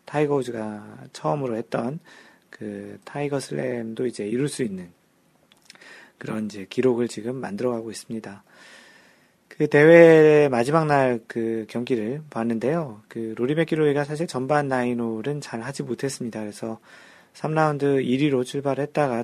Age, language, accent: 40-59, Korean, native